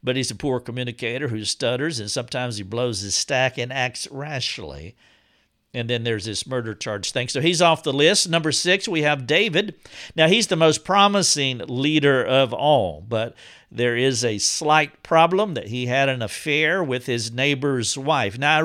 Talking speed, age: 185 wpm, 50-69